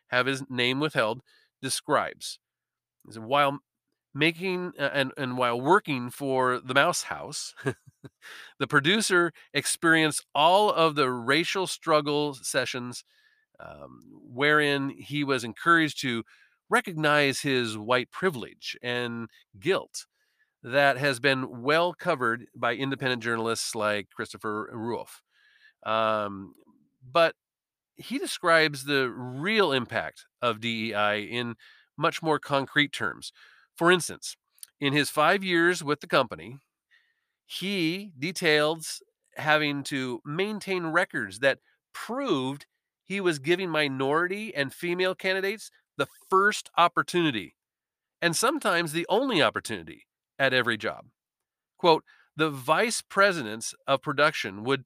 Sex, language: male, English